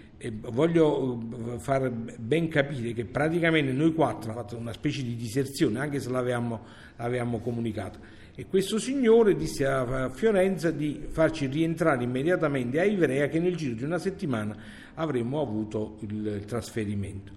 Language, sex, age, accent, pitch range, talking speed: Italian, male, 50-69, native, 115-150 Hz, 145 wpm